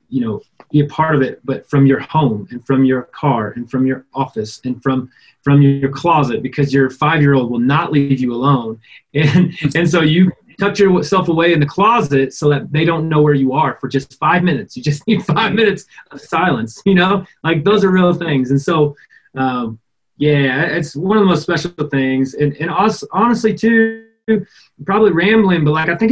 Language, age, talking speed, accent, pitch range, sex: English, 30-49, 205 wpm, American, 135-180 Hz, male